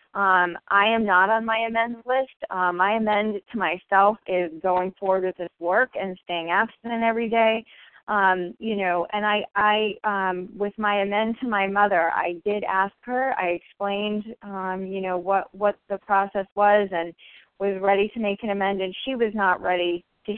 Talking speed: 190 wpm